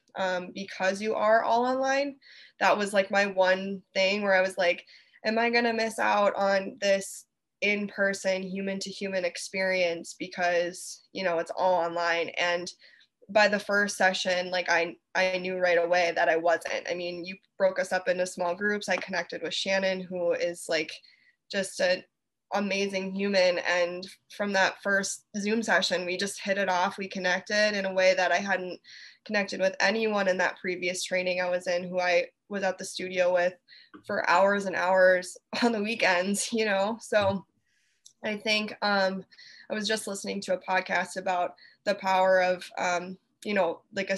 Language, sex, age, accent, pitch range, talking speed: English, female, 20-39, American, 180-200 Hz, 180 wpm